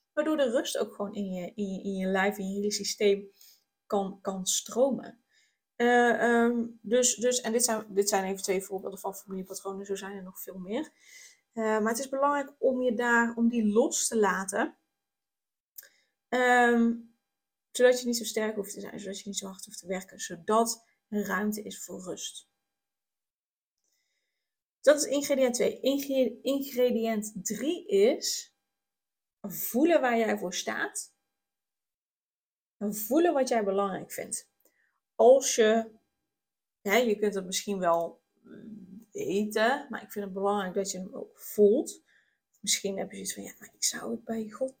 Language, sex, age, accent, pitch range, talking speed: Dutch, female, 20-39, Dutch, 200-245 Hz, 165 wpm